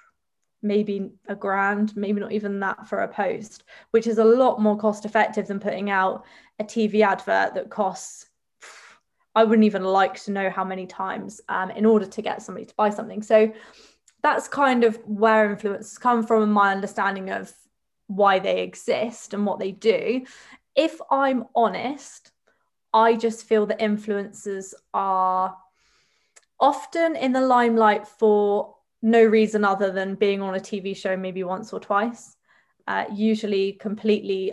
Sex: female